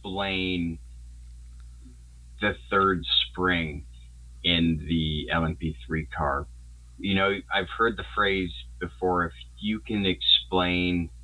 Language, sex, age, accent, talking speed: English, male, 30-49, American, 100 wpm